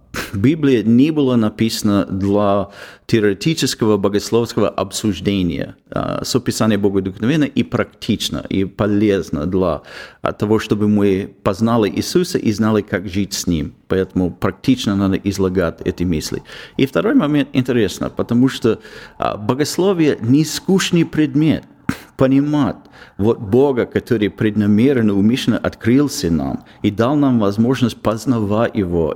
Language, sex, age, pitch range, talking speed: Ukrainian, male, 40-59, 100-130 Hz, 115 wpm